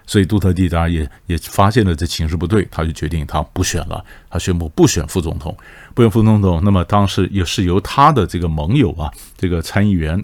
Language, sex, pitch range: Chinese, male, 90-125 Hz